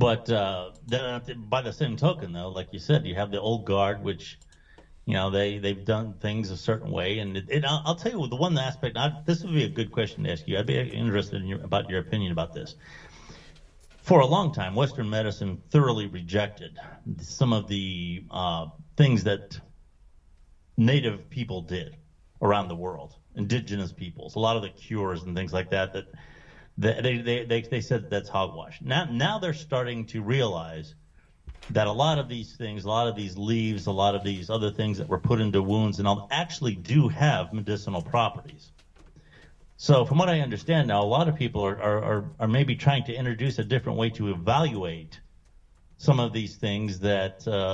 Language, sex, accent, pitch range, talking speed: English, male, American, 95-130 Hz, 195 wpm